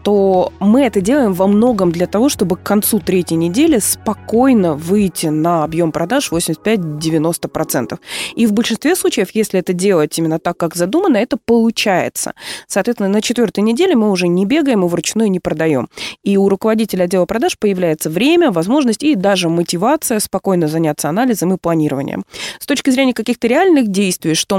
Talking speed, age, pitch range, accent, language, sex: 165 wpm, 20-39, 160-225 Hz, native, Russian, female